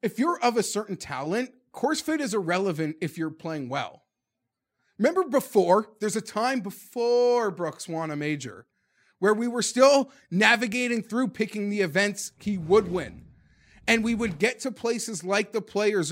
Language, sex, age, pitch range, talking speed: English, male, 30-49, 175-235 Hz, 170 wpm